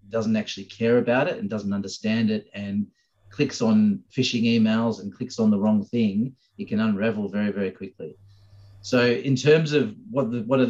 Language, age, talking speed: English, 30-49, 190 wpm